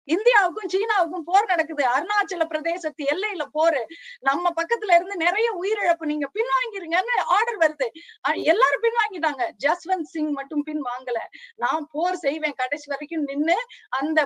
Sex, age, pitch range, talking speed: female, 20-39, 290-385 Hz, 130 wpm